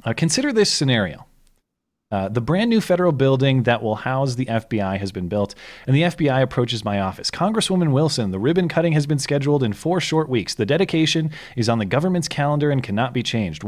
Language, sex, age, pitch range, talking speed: English, male, 30-49, 115-155 Hz, 205 wpm